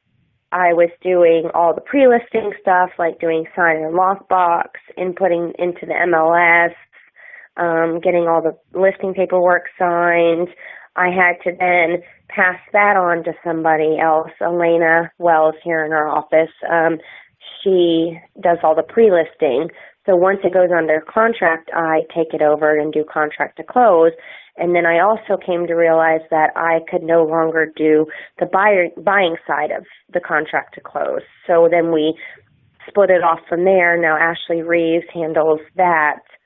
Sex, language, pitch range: female, English, 160-180 Hz